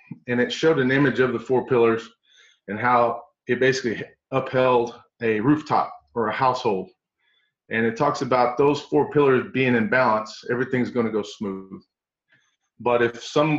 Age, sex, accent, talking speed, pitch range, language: 30-49, male, American, 165 wpm, 120-145 Hz, English